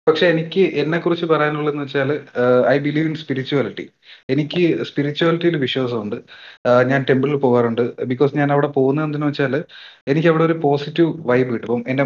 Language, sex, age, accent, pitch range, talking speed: Malayalam, male, 30-49, native, 130-160 Hz, 145 wpm